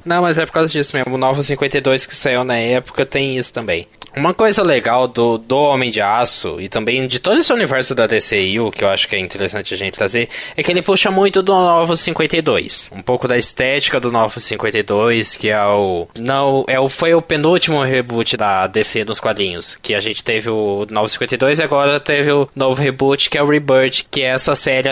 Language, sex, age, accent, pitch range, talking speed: Portuguese, male, 20-39, Brazilian, 125-165 Hz, 220 wpm